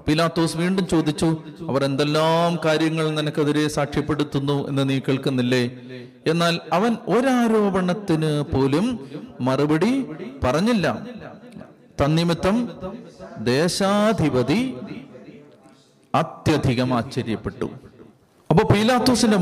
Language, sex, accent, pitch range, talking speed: Malayalam, male, native, 145-185 Hz, 70 wpm